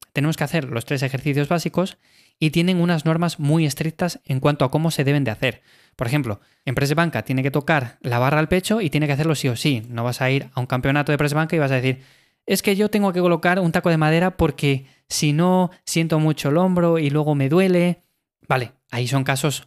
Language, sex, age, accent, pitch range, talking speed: Spanish, male, 20-39, Spanish, 135-170 Hz, 235 wpm